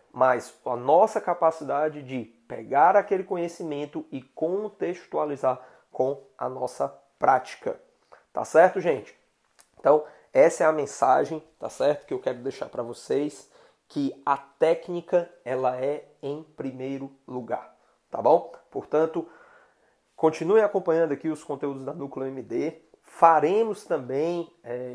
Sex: male